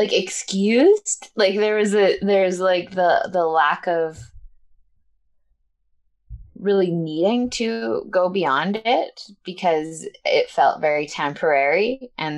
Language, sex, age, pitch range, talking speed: English, female, 20-39, 145-195 Hz, 115 wpm